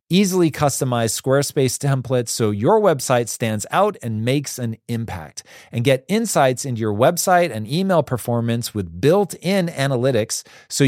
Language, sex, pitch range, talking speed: English, male, 115-160 Hz, 145 wpm